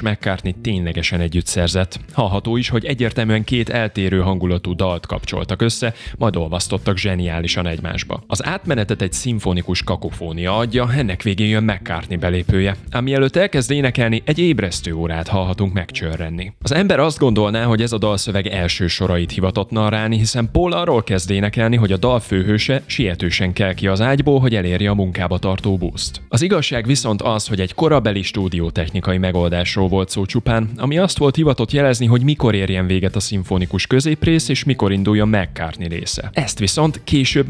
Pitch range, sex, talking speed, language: 95-120 Hz, male, 160 wpm, Hungarian